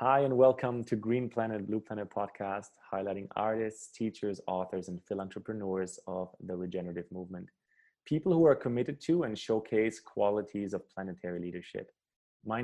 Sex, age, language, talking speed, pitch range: male, 20-39, English, 145 wpm, 100-120 Hz